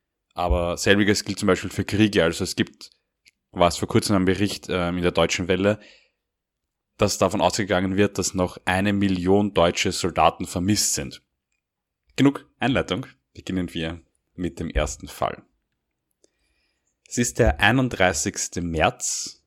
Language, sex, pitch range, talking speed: German, male, 85-100 Hz, 140 wpm